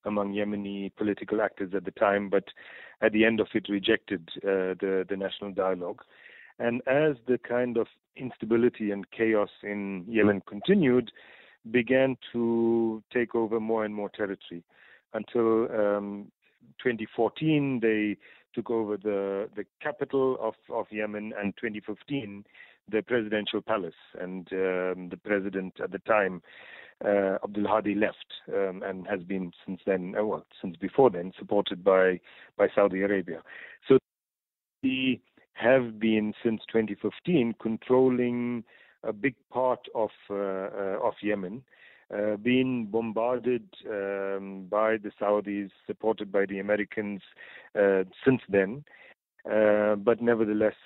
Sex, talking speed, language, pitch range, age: male, 130 wpm, English, 100-115 Hz, 40-59